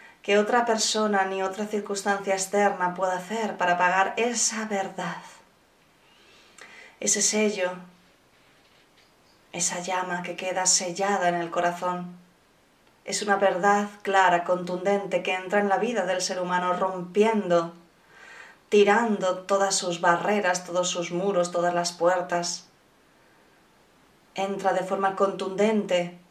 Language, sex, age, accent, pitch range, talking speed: Spanish, female, 20-39, Spanish, 180-200 Hz, 115 wpm